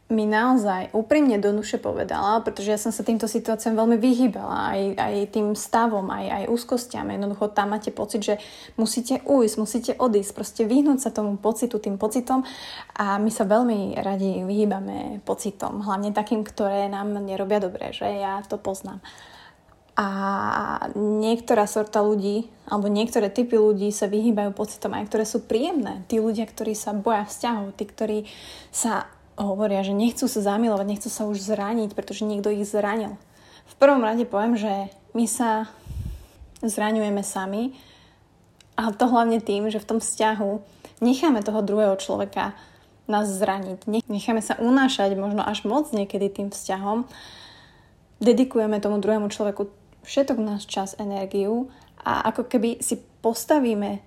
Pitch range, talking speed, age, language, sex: 205-230 Hz, 155 wpm, 20-39, Slovak, female